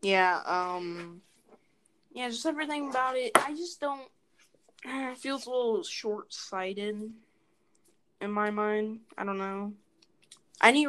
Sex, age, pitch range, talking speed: female, 20-39, 175-225 Hz, 130 wpm